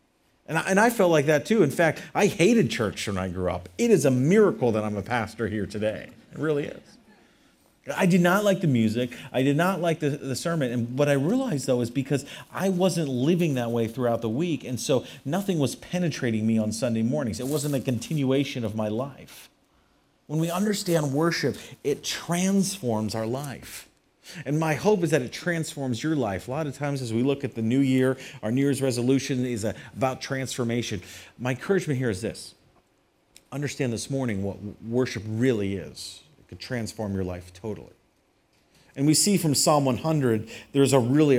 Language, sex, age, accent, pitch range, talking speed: English, male, 40-59, American, 115-150 Hz, 195 wpm